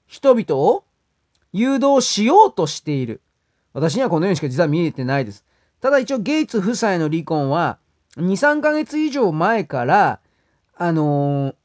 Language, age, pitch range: Japanese, 40-59, 165-265 Hz